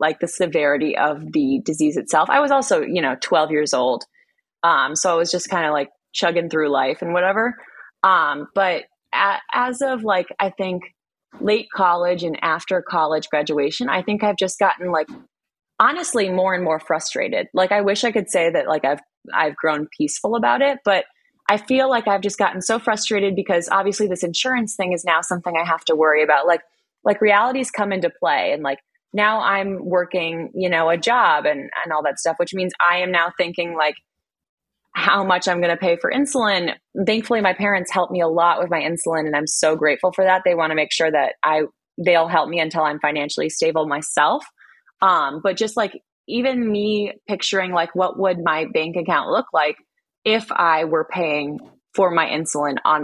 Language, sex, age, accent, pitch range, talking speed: English, female, 20-39, American, 160-205 Hz, 200 wpm